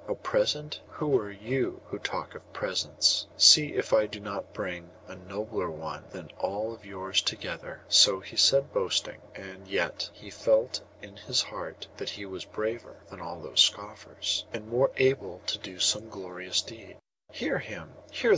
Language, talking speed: English, 175 wpm